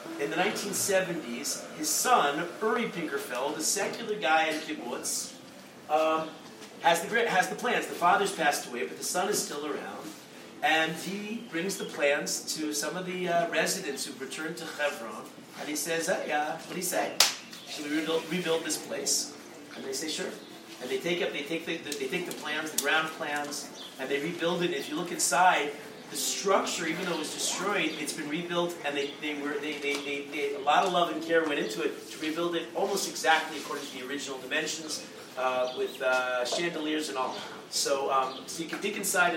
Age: 40-59